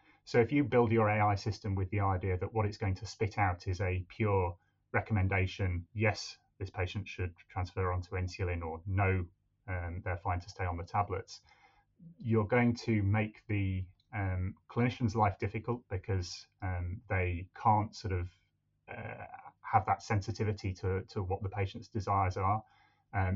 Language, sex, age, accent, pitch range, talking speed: English, male, 30-49, British, 95-110 Hz, 165 wpm